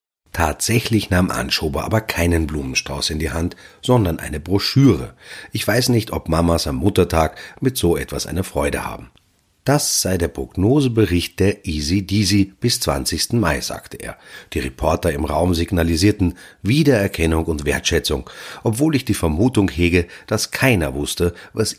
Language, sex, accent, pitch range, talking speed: German, male, German, 80-115 Hz, 145 wpm